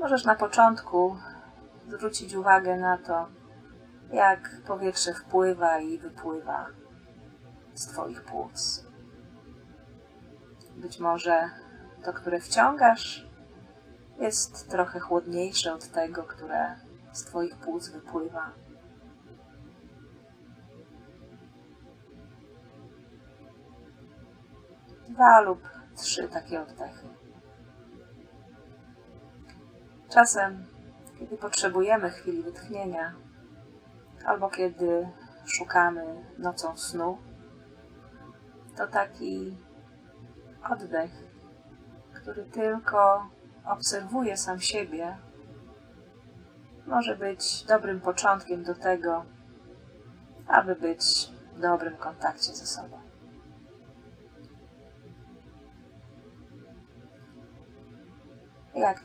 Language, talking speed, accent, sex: Polish, 70 wpm, native, female